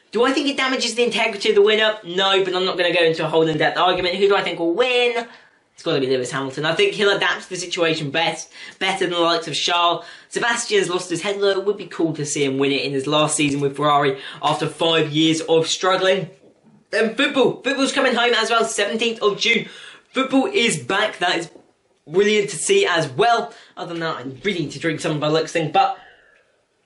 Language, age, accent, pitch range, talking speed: English, 10-29, British, 165-230 Hz, 230 wpm